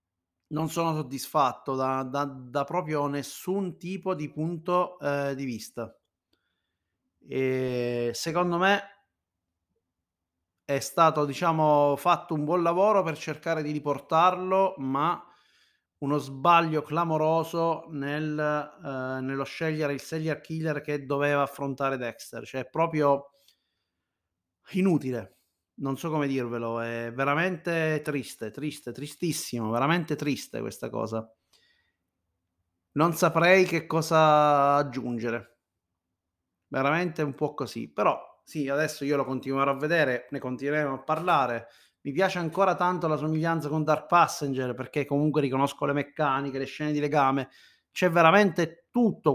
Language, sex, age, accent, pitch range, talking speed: Italian, male, 30-49, native, 130-160 Hz, 120 wpm